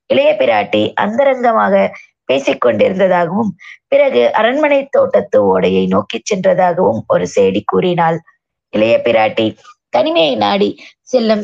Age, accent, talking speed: 20-39, native, 95 wpm